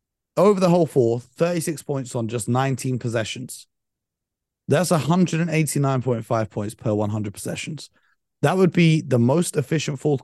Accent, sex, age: British, male, 30-49